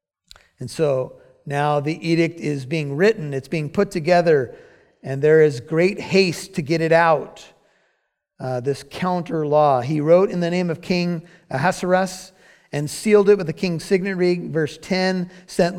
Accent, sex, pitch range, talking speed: American, male, 145-190 Hz, 165 wpm